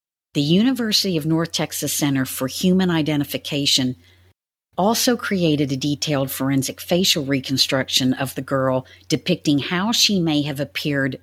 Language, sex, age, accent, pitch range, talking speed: English, female, 50-69, American, 125-160 Hz, 135 wpm